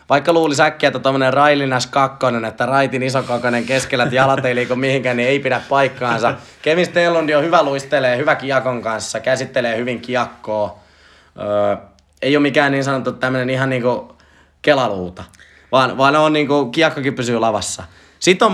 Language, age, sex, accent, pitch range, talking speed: Finnish, 20-39, male, native, 120-150 Hz, 170 wpm